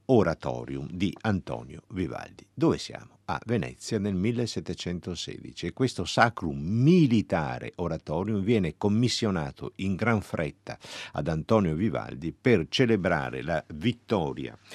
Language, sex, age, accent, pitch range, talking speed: Italian, male, 50-69, native, 75-110 Hz, 110 wpm